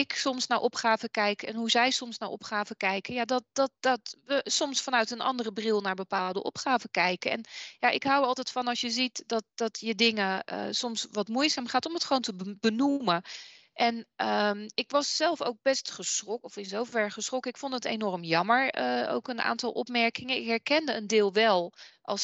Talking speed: 210 wpm